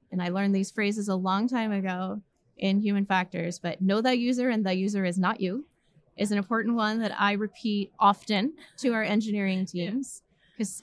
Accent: American